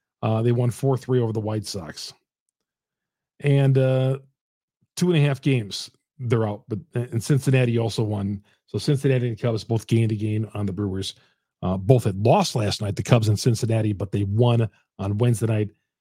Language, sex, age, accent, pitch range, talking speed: English, male, 40-59, American, 110-140 Hz, 180 wpm